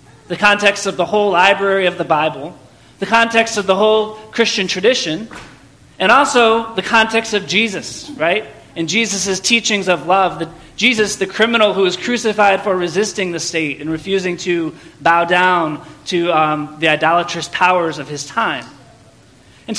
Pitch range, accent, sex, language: 165-215 Hz, American, male, English